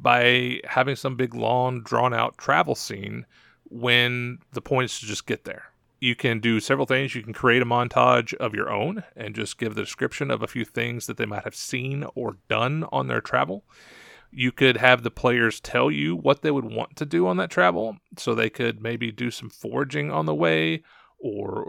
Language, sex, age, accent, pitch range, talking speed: English, male, 30-49, American, 115-140 Hz, 205 wpm